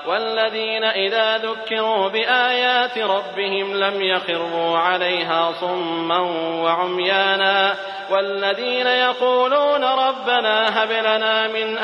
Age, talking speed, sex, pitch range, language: 30-49, 80 wpm, male, 170-200 Hz, English